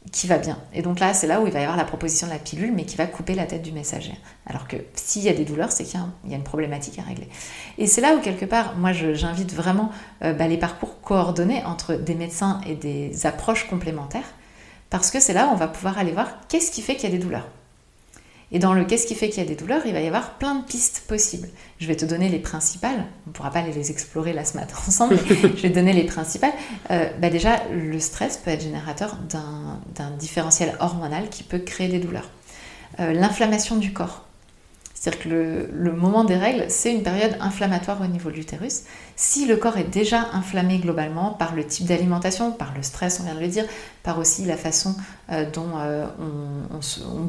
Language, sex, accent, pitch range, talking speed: French, female, French, 160-205 Hz, 235 wpm